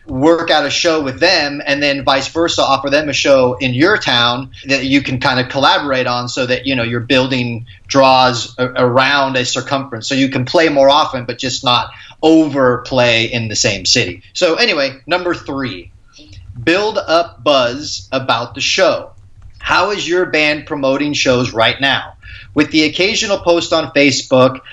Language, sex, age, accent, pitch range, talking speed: English, male, 30-49, American, 125-155 Hz, 175 wpm